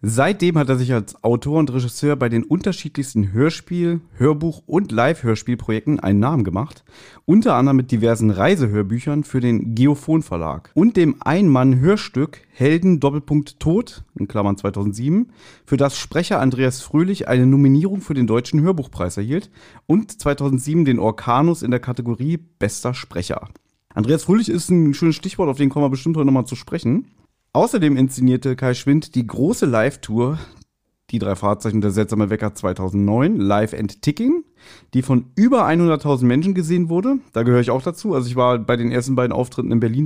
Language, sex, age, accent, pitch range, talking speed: German, male, 30-49, German, 120-160 Hz, 160 wpm